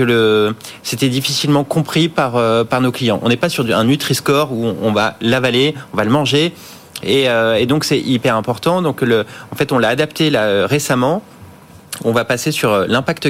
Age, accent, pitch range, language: 30-49, French, 115-140 Hz, French